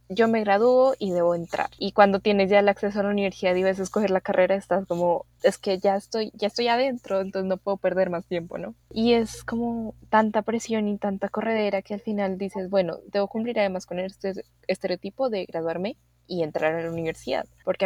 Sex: female